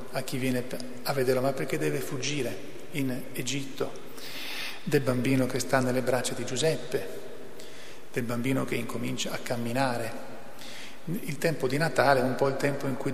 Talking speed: 165 wpm